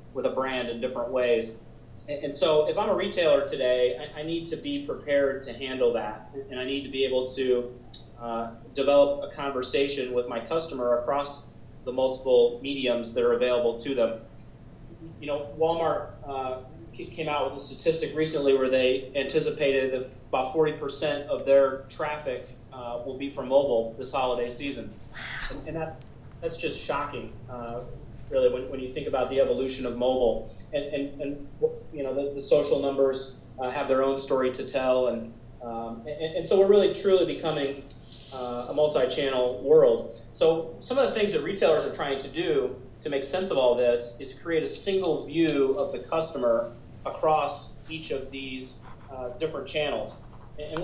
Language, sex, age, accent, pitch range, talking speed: English, male, 30-49, American, 125-155 Hz, 175 wpm